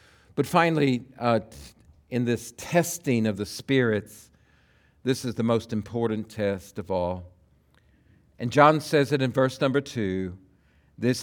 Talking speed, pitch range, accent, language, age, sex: 140 wpm, 110-160 Hz, American, English, 50-69, male